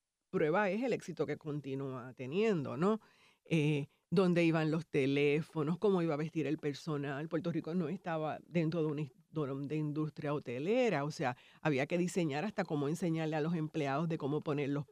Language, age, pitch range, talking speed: Spanish, 50-69, 150-195 Hz, 180 wpm